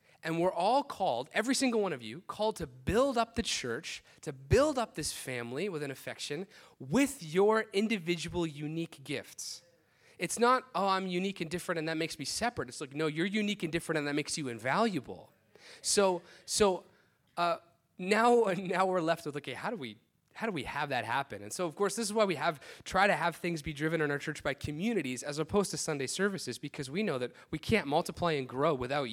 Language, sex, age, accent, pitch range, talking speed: English, male, 30-49, American, 145-195 Hz, 215 wpm